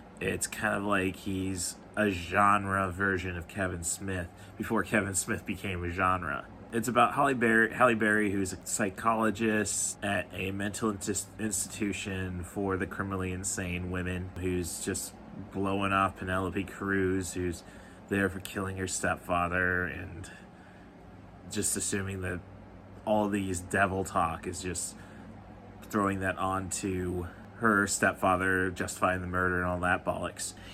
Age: 20-39